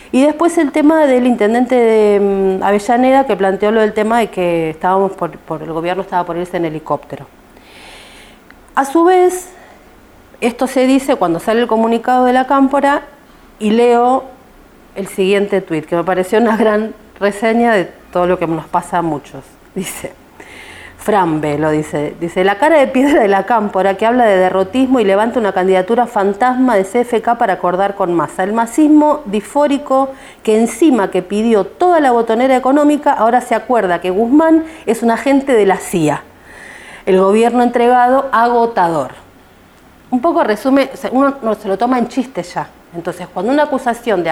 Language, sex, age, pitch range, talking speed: Spanish, female, 40-59, 190-255 Hz, 170 wpm